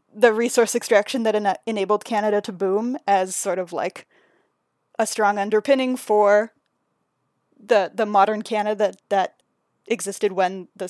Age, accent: 10-29, American